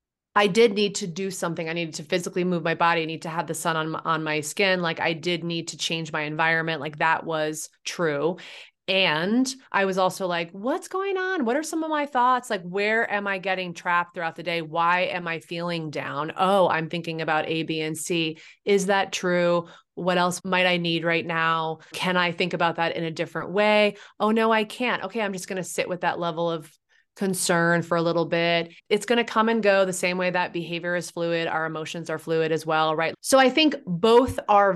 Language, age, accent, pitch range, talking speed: English, 30-49, American, 165-200 Hz, 230 wpm